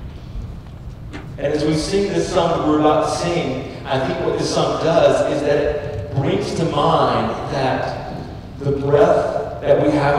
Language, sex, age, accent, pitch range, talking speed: English, male, 40-59, American, 125-150 Hz, 170 wpm